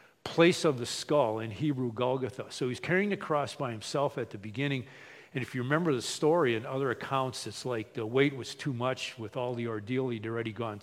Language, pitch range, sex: English, 120-150 Hz, male